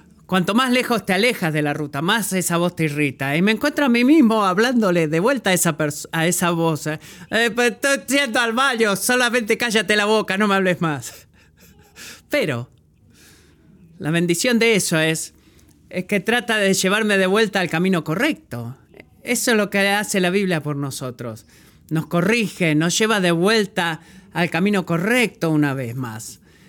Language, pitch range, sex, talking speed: Spanish, 160-215 Hz, male, 170 wpm